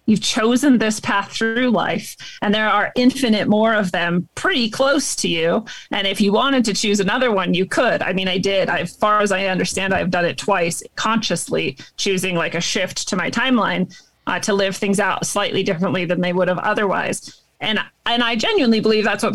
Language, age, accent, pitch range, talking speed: English, 30-49, American, 190-225 Hz, 215 wpm